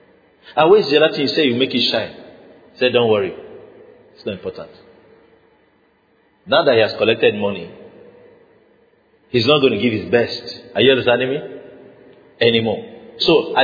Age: 50-69